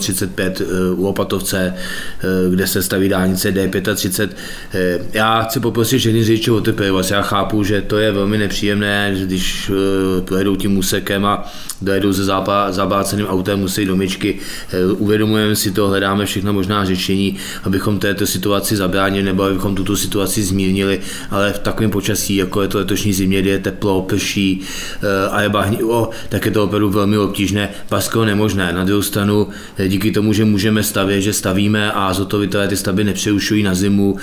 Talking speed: 170 wpm